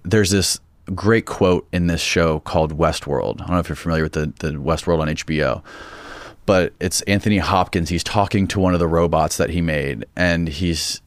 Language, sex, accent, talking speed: English, male, American, 200 wpm